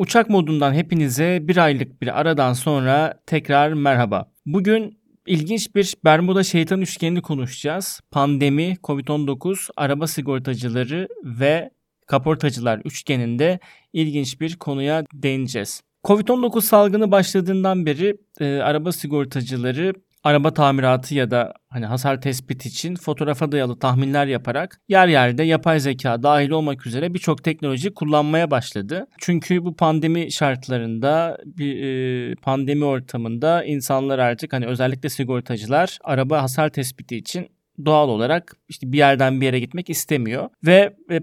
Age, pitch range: 40-59, 135-170 Hz